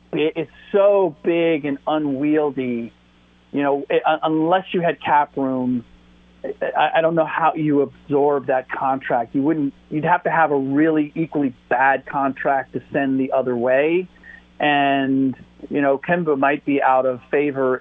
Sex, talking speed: male, 160 wpm